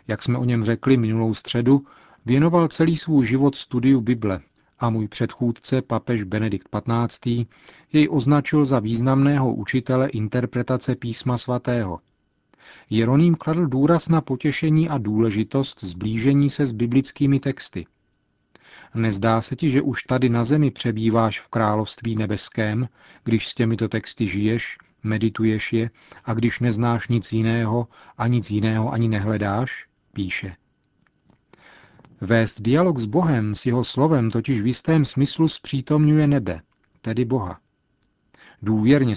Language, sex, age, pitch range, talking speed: Czech, male, 40-59, 110-135 Hz, 130 wpm